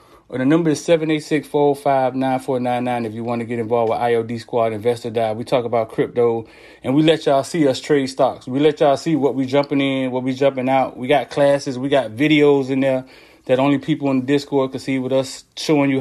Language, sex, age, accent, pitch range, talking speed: English, male, 30-49, American, 120-150 Hz, 260 wpm